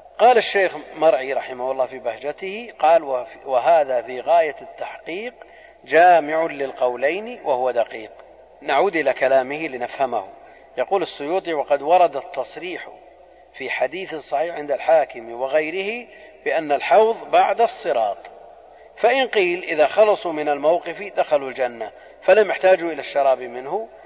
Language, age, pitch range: Arabic, 40-59, 135-205 Hz